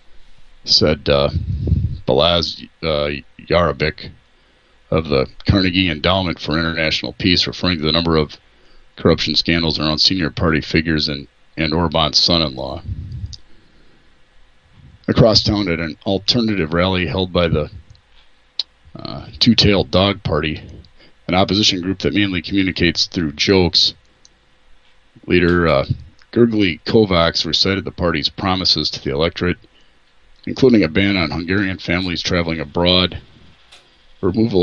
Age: 40-59